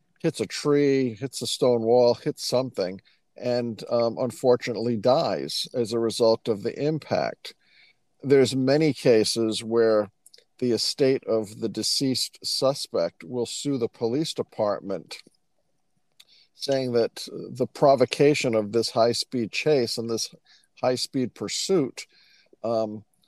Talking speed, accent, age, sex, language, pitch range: 120 wpm, American, 50-69, male, English, 110-130 Hz